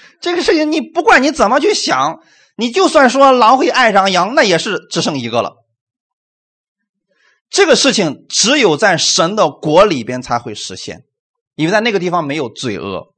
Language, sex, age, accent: Chinese, male, 30-49, native